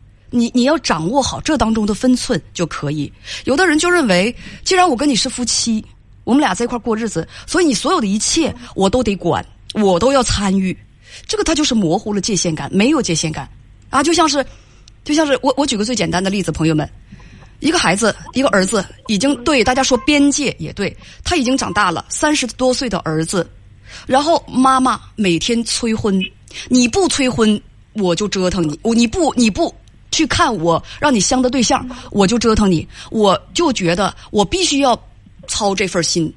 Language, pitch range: Chinese, 175-270 Hz